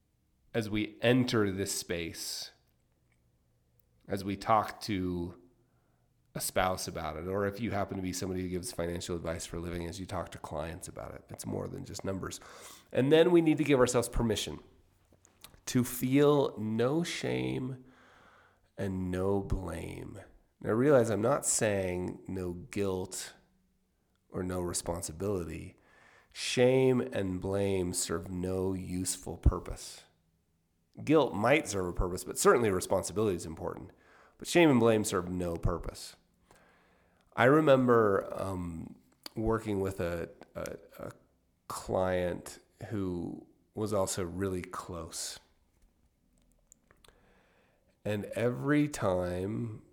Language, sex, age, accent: English, male, 30-49, American